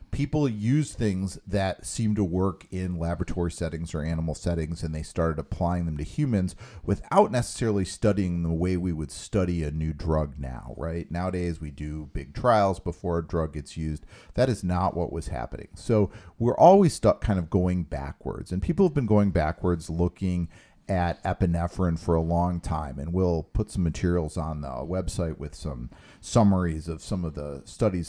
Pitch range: 80-100 Hz